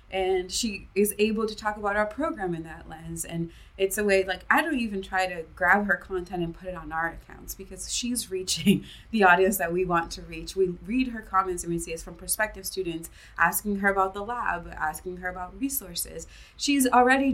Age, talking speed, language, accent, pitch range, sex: 20-39, 220 wpm, English, American, 180-210 Hz, female